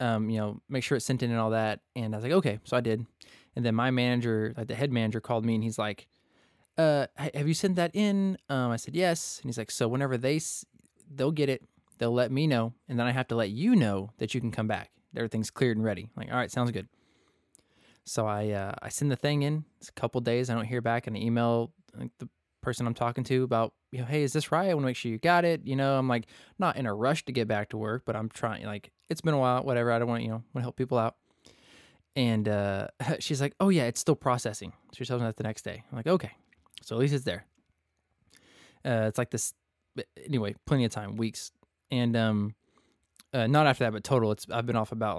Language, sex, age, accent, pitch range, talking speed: English, male, 20-39, American, 110-135 Hz, 260 wpm